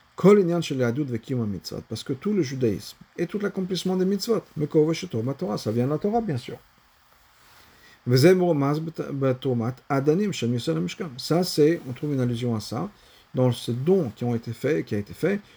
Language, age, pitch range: French, 50-69, 115-165 Hz